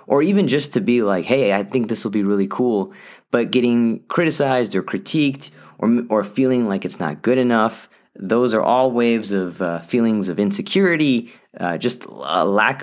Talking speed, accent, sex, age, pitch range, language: 185 wpm, American, male, 30-49, 100-135 Hz, English